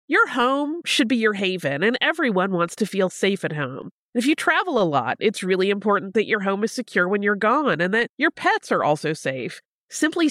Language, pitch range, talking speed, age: English, 180-245 Hz, 220 wpm, 30-49